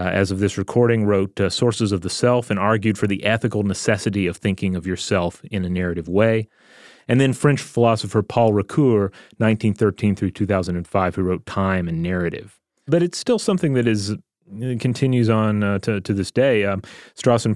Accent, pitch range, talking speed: American, 95-115 Hz, 185 wpm